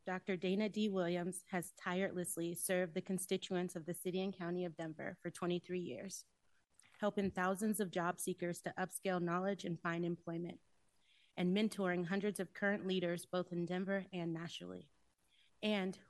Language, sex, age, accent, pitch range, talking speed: English, female, 30-49, American, 175-195 Hz, 155 wpm